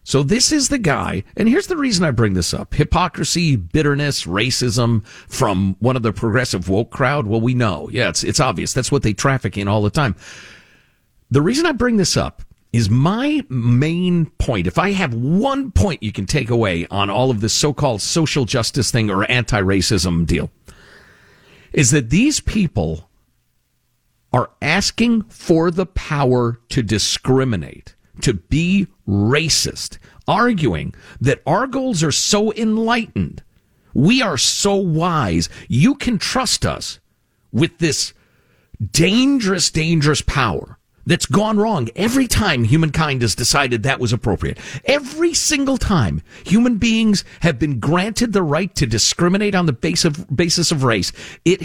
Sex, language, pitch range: male, English, 115-185 Hz